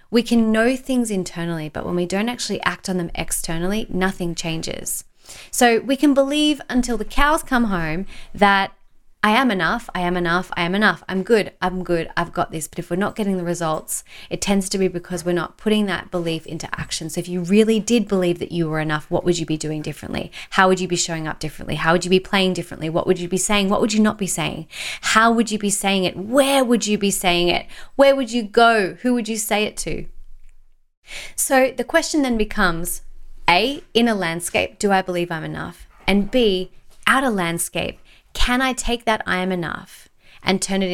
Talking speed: 225 wpm